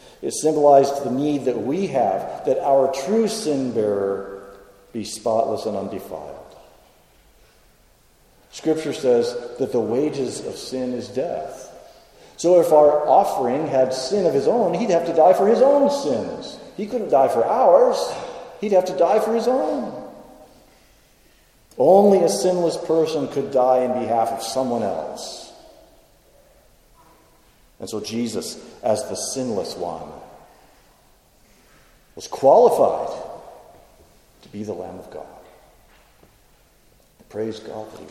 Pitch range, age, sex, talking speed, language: 110-165 Hz, 50-69, male, 130 wpm, English